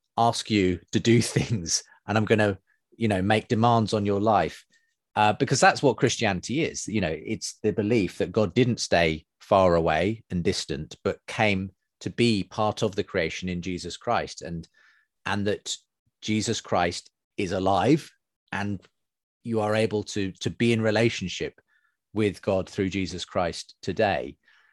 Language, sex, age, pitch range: English, male, 30-49, 95-120 Hz